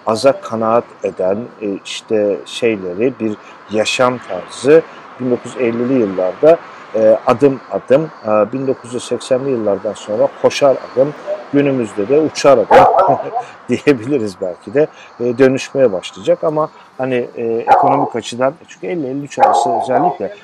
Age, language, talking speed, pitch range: 50-69, Turkish, 105 wpm, 110-140 Hz